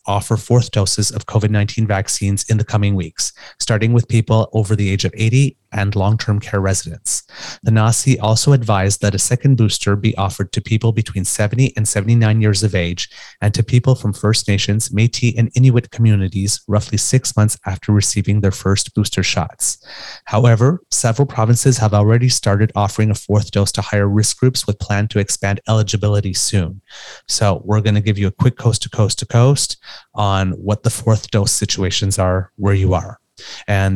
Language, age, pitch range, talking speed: English, 30-49, 100-115 Hz, 185 wpm